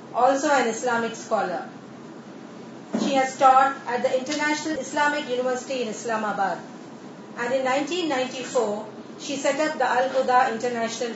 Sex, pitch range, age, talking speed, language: female, 230-280 Hz, 30-49, 125 wpm, Urdu